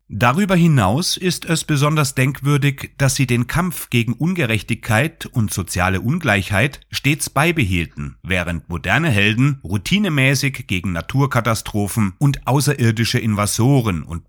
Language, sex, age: German, male, 30-49